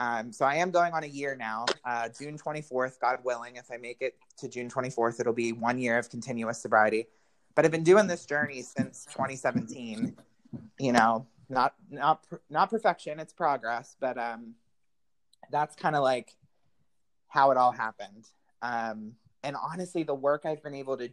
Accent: American